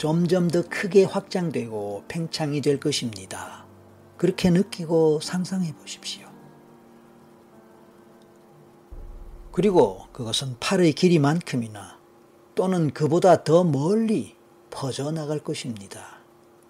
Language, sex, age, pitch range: Korean, male, 40-59, 115-160 Hz